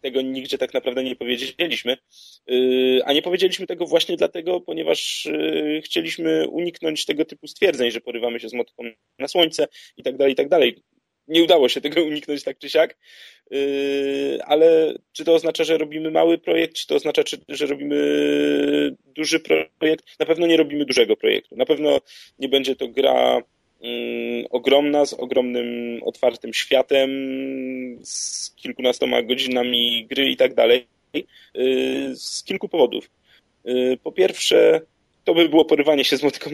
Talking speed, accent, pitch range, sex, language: 145 wpm, native, 120-160 Hz, male, Polish